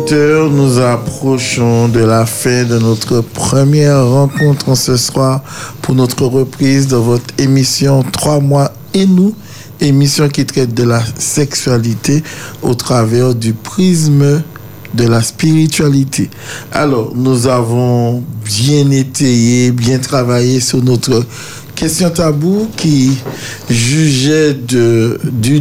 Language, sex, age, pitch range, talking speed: French, male, 60-79, 120-145 Hz, 115 wpm